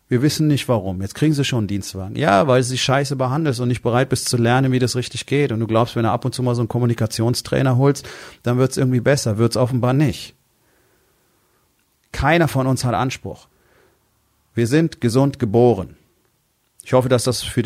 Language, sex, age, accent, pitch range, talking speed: German, male, 40-59, German, 105-130 Hz, 205 wpm